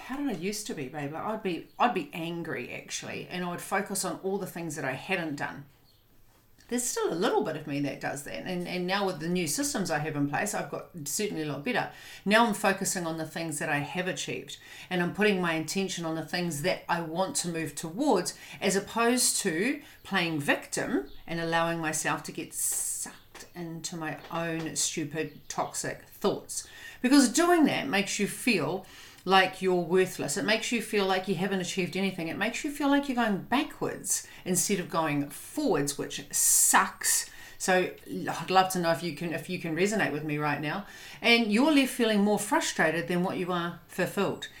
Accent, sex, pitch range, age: Australian, female, 165-235 Hz, 40-59